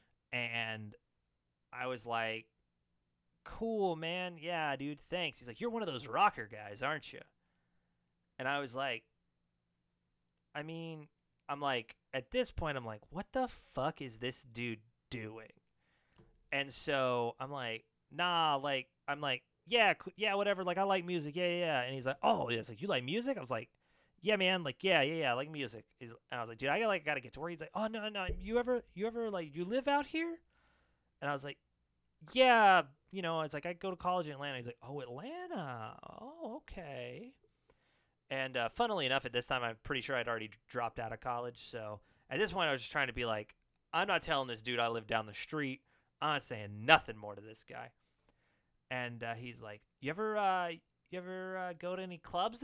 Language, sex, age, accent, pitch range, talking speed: English, male, 30-49, American, 115-180 Hz, 210 wpm